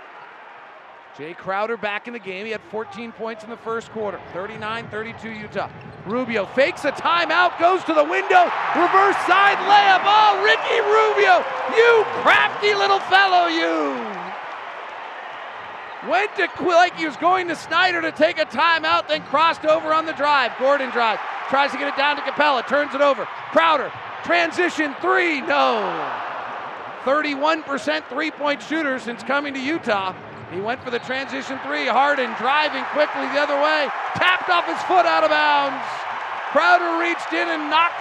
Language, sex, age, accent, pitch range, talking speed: English, male, 40-59, American, 255-335 Hz, 160 wpm